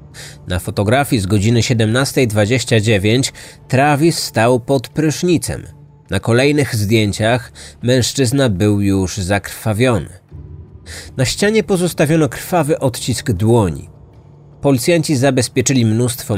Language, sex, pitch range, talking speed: Polish, male, 95-135 Hz, 90 wpm